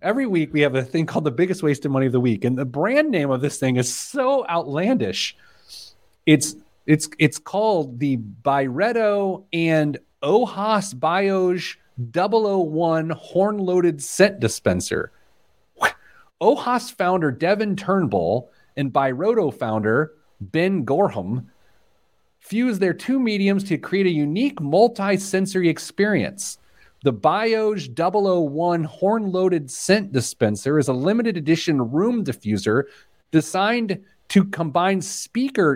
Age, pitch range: 30-49, 150-205 Hz